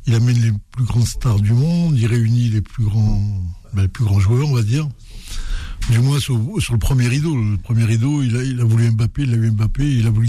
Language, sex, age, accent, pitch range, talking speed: French, male, 60-79, French, 110-140 Hz, 255 wpm